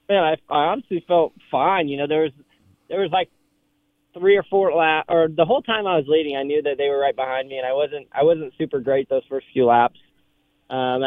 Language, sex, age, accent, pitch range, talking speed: English, male, 20-39, American, 120-145 Hz, 240 wpm